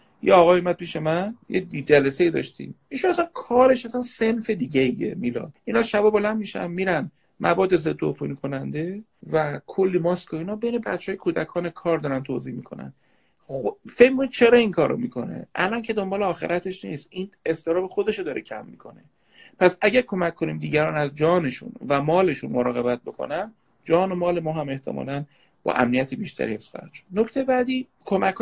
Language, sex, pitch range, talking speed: Persian, male, 145-210 Hz, 165 wpm